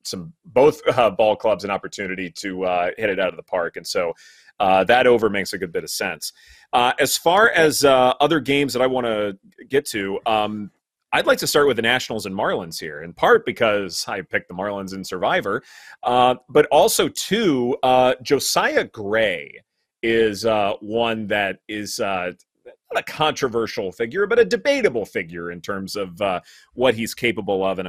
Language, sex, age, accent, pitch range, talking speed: English, male, 30-49, American, 105-150 Hz, 190 wpm